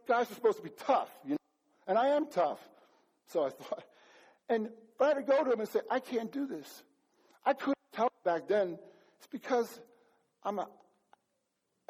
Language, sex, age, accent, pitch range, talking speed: English, male, 50-69, American, 190-270 Hz, 190 wpm